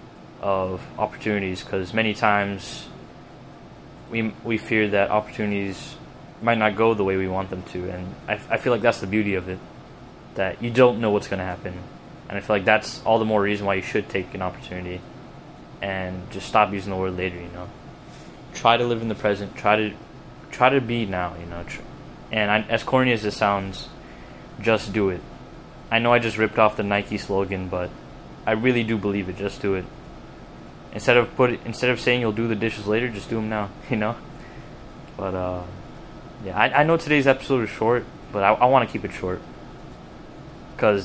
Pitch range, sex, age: 95-115 Hz, male, 20-39